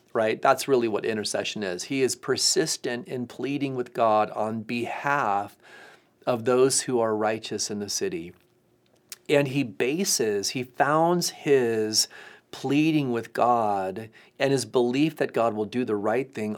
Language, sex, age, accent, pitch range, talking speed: English, male, 40-59, American, 115-140 Hz, 150 wpm